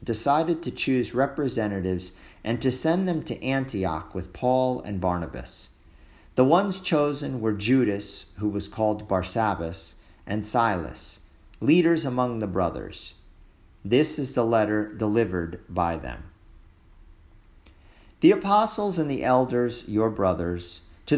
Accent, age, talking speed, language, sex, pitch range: American, 50-69, 125 wpm, English, male, 90-130 Hz